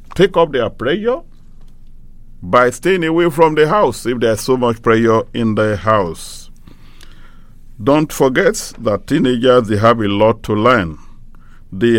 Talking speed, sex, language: 145 wpm, male, English